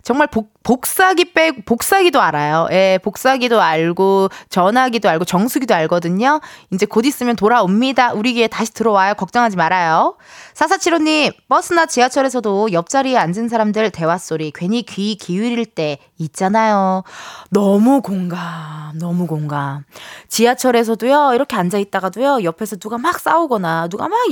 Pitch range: 185-270 Hz